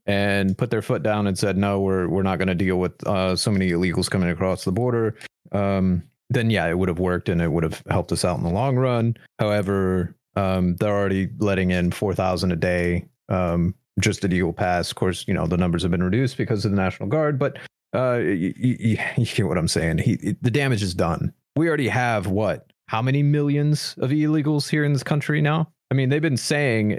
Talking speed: 230 wpm